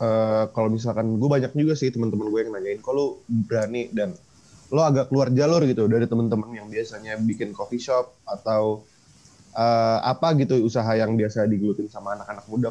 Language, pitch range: Indonesian, 110-135 Hz